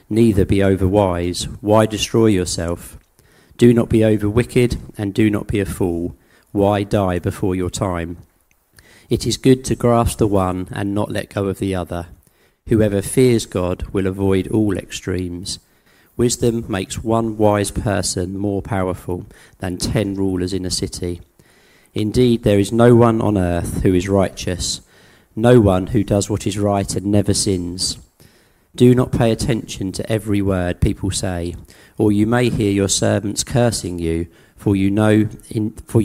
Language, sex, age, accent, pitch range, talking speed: English, male, 40-59, British, 90-110 Hz, 160 wpm